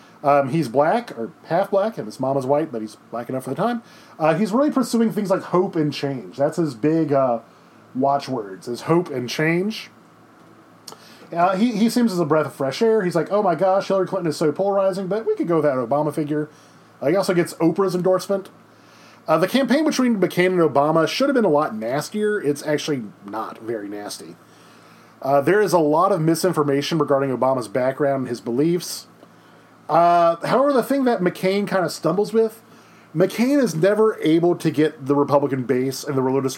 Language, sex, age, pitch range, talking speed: English, male, 30-49, 130-190 Hz, 200 wpm